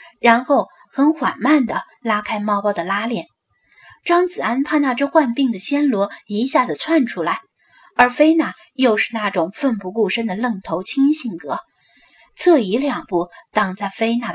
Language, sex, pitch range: Chinese, female, 200-270 Hz